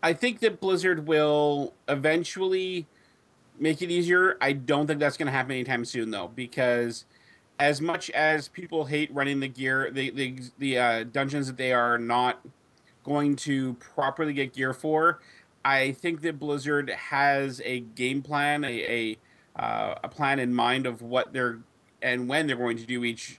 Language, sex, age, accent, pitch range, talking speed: English, male, 30-49, American, 125-150 Hz, 175 wpm